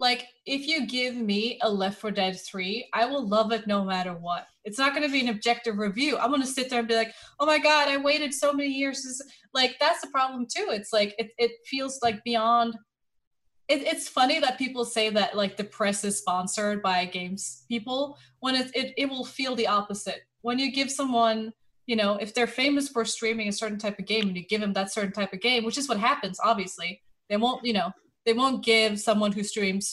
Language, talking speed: English, 230 wpm